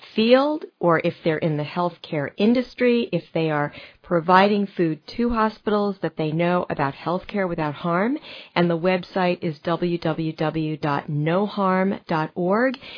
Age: 40-59